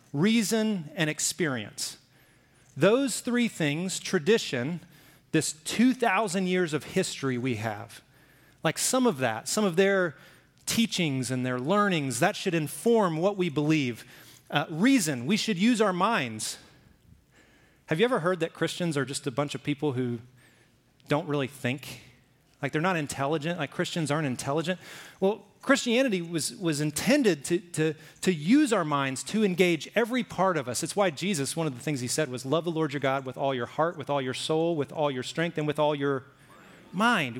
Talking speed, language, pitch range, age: 180 wpm, English, 135-190 Hz, 30-49